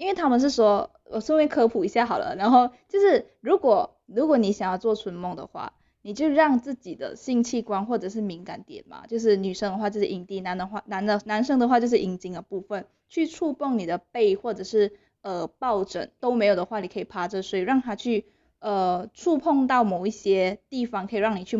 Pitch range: 200-250 Hz